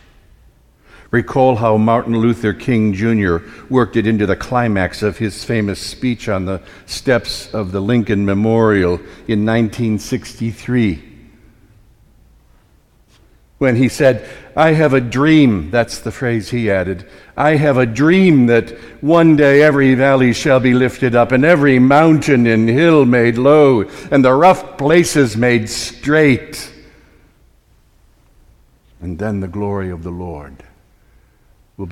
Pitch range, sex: 100-140 Hz, male